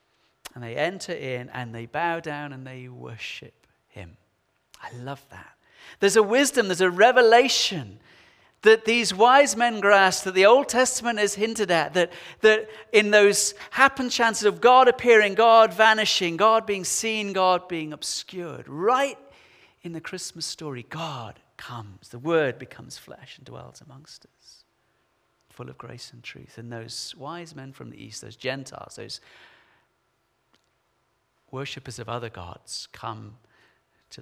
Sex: male